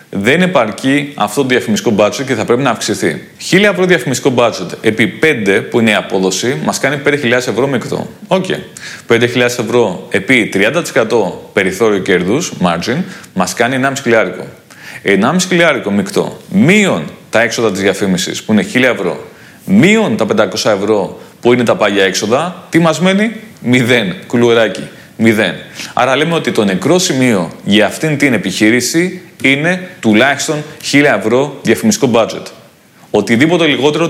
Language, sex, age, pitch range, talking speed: Greek, male, 30-49, 115-155 Hz, 150 wpm